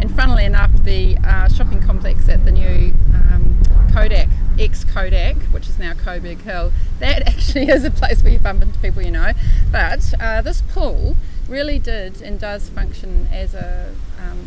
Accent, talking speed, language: Australian, 175 wpm, English